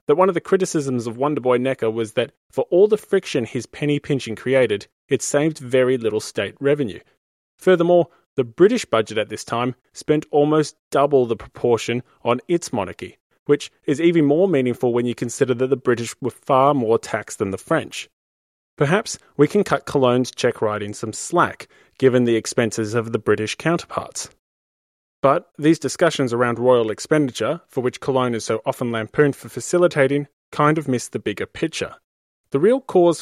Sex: male